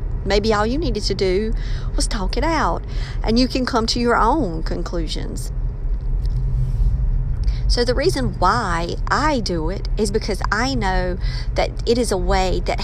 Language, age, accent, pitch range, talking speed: English, 40-59, American, 185-250 Hz, 165 wpm